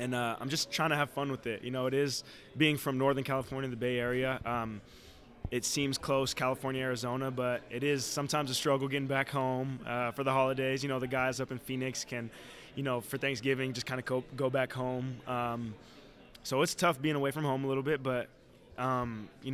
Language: English